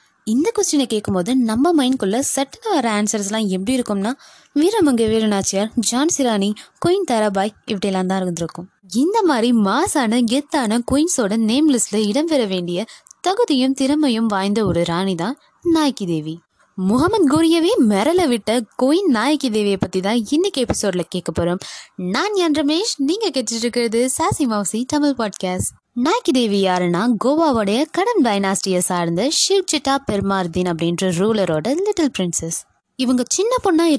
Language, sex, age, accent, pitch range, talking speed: Tamil, female, 20-39, native, 195-285 Hz, 60 wpm